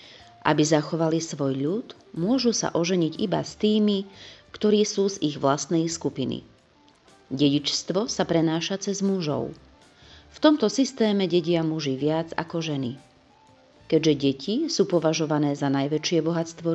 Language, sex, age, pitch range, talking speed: Slovak, female, 30-49, 145-195 Hz, 130 wpm